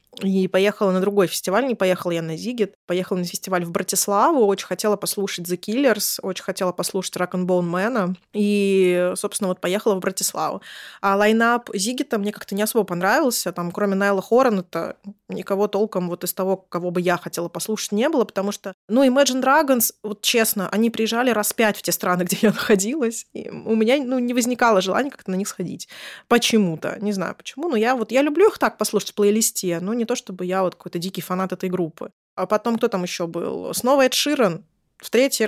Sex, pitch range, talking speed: female, 185-225 Hz, 200 wpm